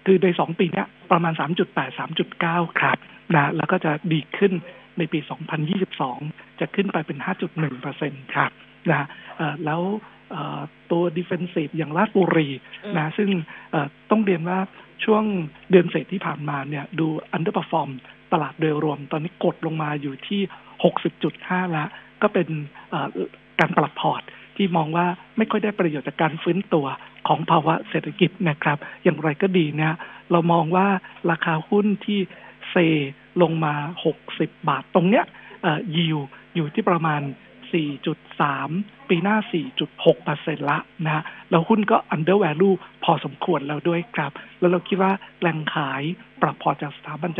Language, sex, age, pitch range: Thai, male, 60-79, 155-190 Hz